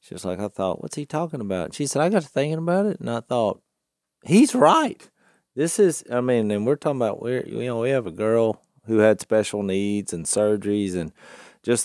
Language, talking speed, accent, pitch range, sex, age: English, 235 wpm, American, 90-115 Hz, male, 40-59